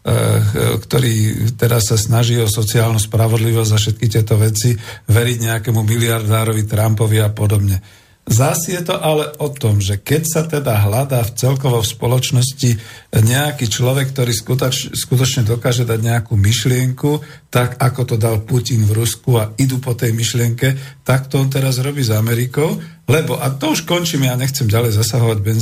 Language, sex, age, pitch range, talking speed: Slovak, male, 50-69, 115-135 Hz, 160 wpm